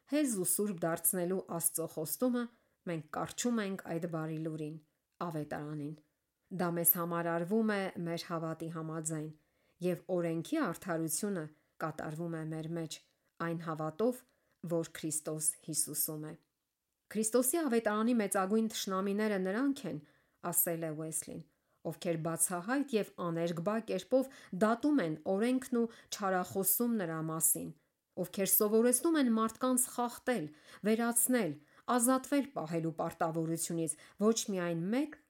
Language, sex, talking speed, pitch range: English, female, 95 wpm, 165-230 Hz